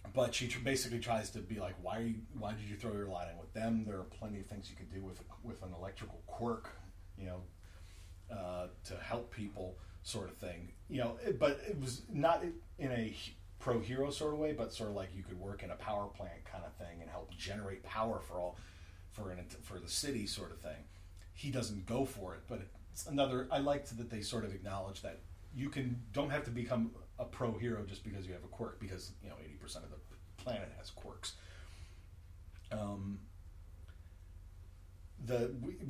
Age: 40-59